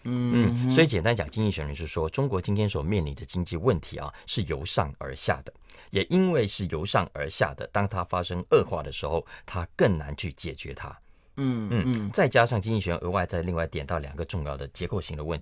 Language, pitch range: Chinese, 80-100 Hz